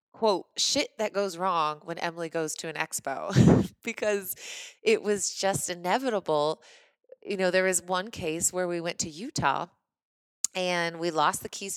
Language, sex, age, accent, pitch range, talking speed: English, female, 20-39, American, 160-195 Hz, 165 wpm